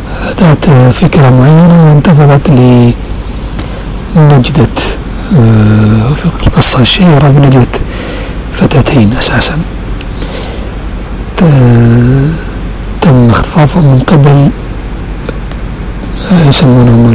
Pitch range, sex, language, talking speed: 105-145 Hz, male, Arabic, 50 wpm